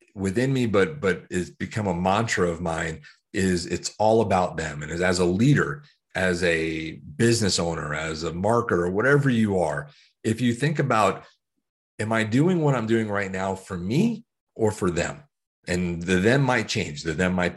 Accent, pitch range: American, 90-115 Hz